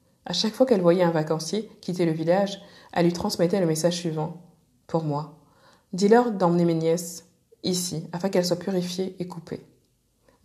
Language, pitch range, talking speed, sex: French, 155-180 Hz, 180 wpm, female